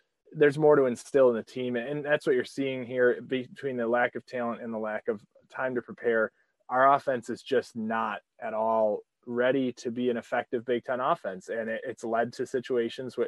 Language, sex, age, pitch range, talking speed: English, male, 20-39, 115-140 Hz, 205 wpm